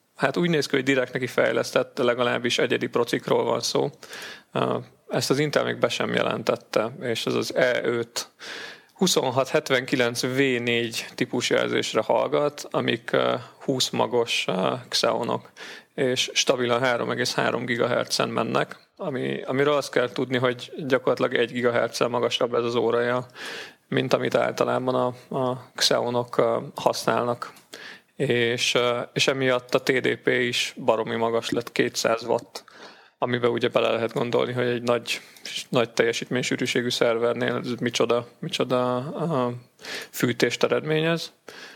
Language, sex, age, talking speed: Hungarian, male, 30-49, 120 wpm